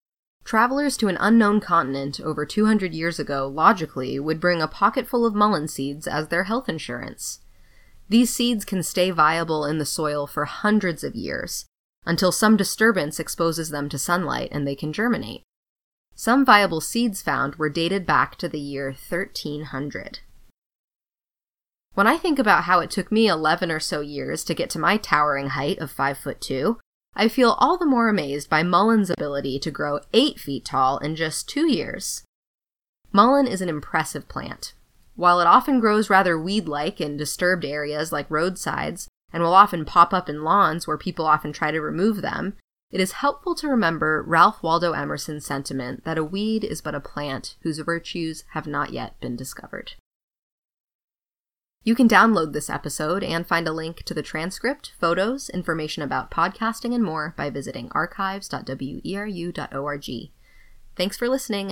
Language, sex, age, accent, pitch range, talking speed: English, female, 20-39, American, 150-210 Hz, 165 wpm